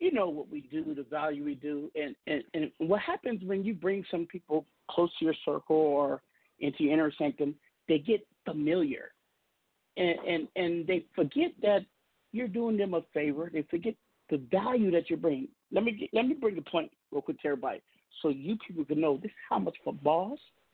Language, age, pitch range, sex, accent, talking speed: English, 50-69, 155-225 Hz, male, American, 205 wpm